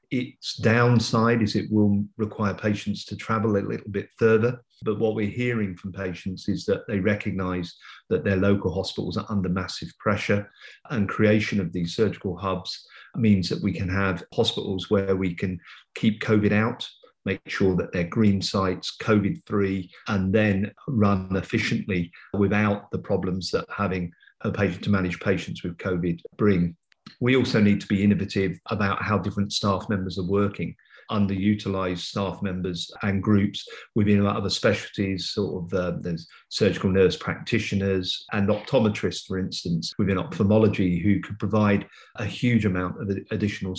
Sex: male